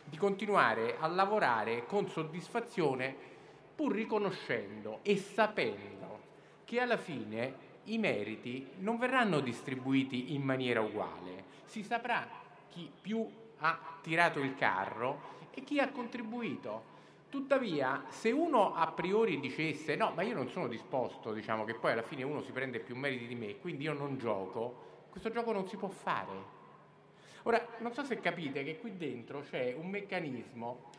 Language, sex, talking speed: Italian, male, 150 wpm